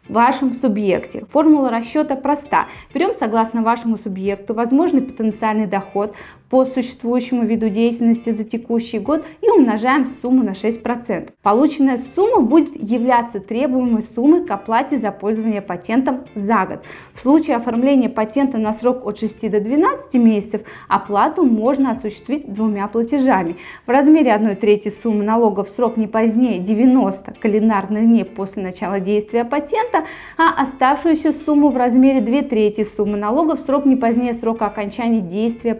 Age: 20-39